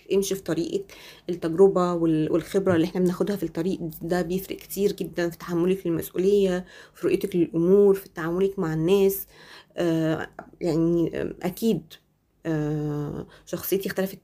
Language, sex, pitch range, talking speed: Arabic, female, 165-195 Hz, 135 wpm